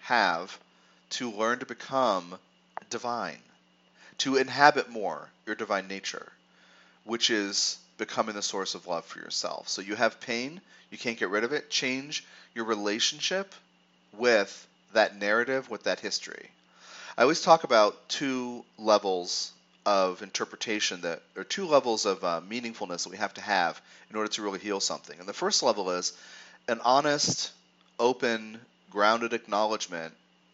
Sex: male